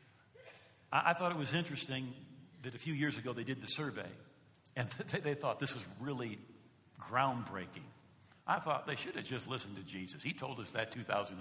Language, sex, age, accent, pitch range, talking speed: English, male, 50-69, American, 125-160 Hz, 185 wpm